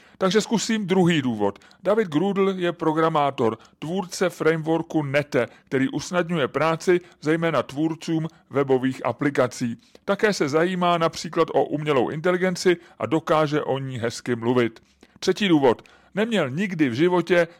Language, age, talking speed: English, 30-49, 125 wpm